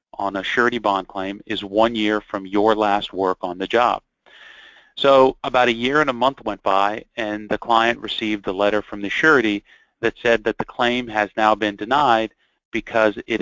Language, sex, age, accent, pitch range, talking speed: English, male, 40-59, American, 95-110 Hz, 195 wpm